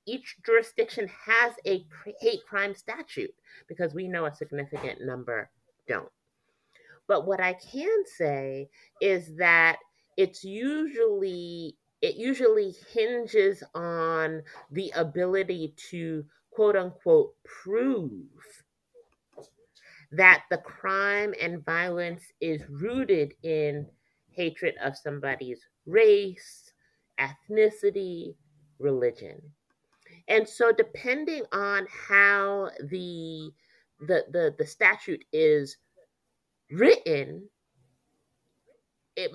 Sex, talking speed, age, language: female, 90 wpm, 30-49, English